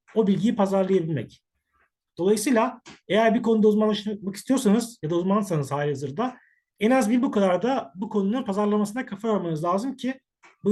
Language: Turkish